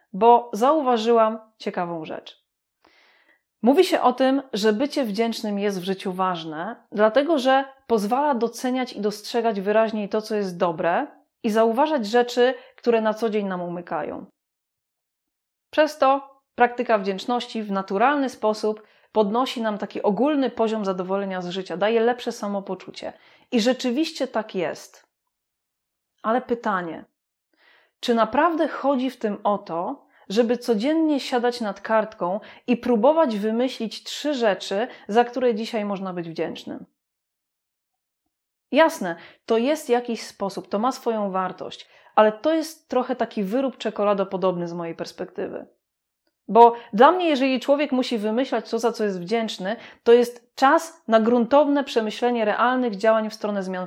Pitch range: 205-255 Hz